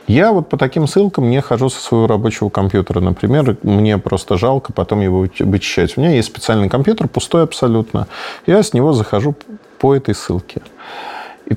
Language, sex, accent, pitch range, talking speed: Russian, male, native, 105-135 Hz, 170 wpm